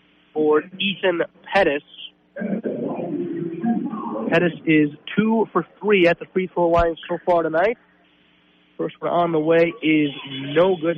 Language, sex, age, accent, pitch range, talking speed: English, male, 40-59, American, 135-190 Hz, 125 wpm